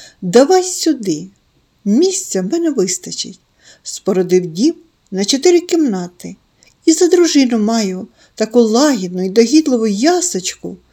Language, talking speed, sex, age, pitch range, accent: Ukrainian, 115 wpm, female, 50-69, 185-295 Hz, native